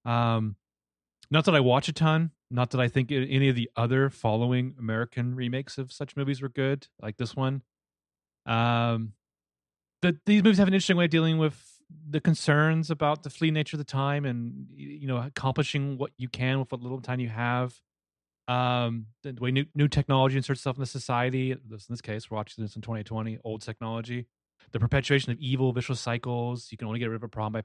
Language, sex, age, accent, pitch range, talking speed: English, male, 30-49, American, 110-140 Hz, 210 wpm